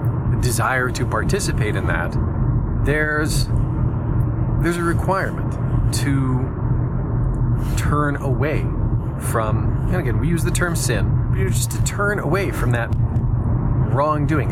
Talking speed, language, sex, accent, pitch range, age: 130 wpm, English, male, American, 115-130 Hz, 40-59